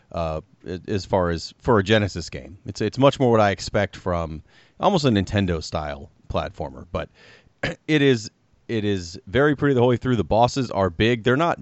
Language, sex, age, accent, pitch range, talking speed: English, male, 30-49, American, 90-115 Hz, 195 wpm